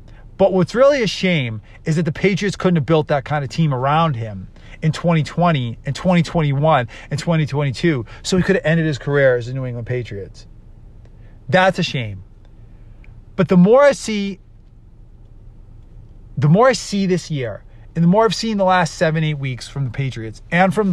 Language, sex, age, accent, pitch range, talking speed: English, male, 30-49, American, 110-180 Hz, 185 wpm